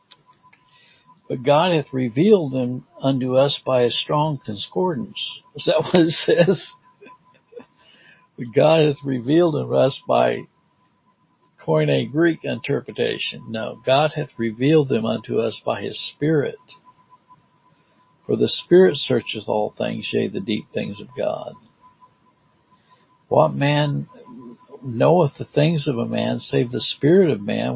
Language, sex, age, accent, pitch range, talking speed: English, male, 60-79, American, 140-200 Hz, 135 wpm